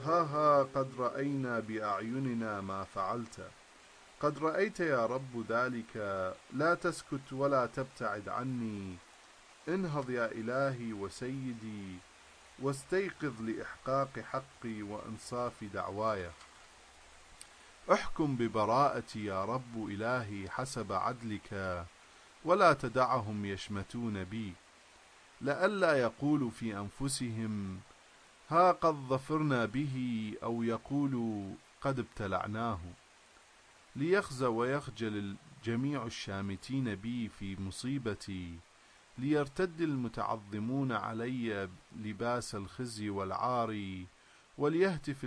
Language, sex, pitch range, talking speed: English, male, 105-135 Hz, 85 wpm